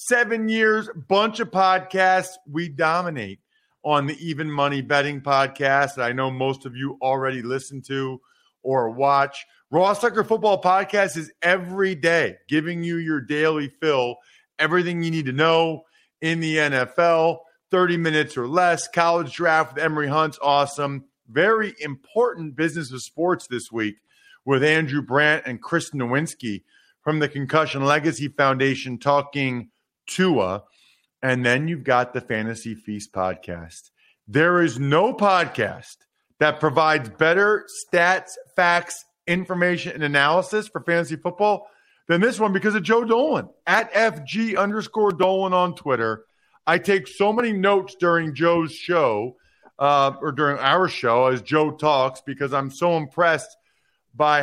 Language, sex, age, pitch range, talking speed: English, male, 40-59, 135-180 Hz, 145 wpm